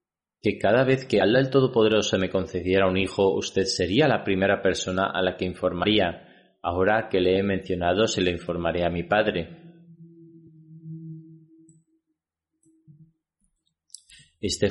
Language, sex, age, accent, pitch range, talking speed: Spanish, male, 30-49, Spanish, 95-130 Hz, 130 wpm